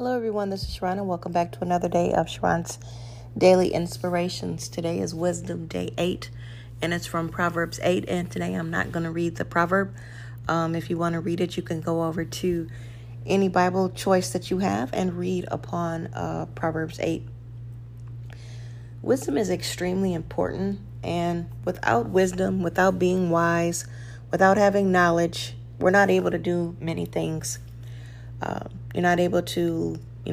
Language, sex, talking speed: English, female, 160 wpm